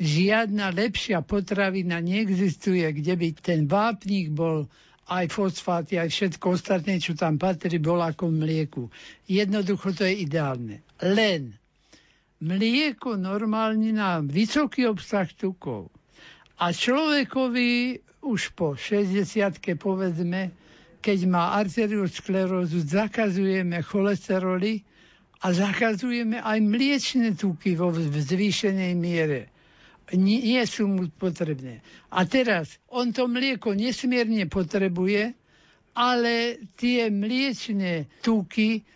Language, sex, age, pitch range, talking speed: Slovak, male, 60-79, 175-220 Hz, 105 wpm